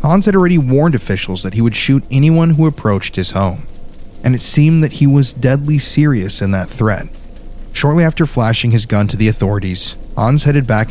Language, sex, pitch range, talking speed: English, male, 100-130 Hz, 200 wpm